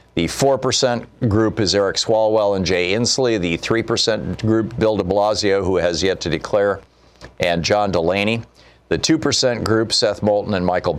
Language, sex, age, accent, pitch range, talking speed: English, male, 50-69, American, 90-120 Hz, 165 wpm